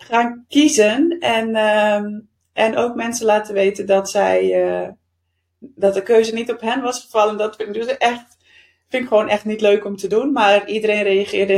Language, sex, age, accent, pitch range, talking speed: Dutch, female, 30-49, Dutch, 180-220 Hz, 190 wpm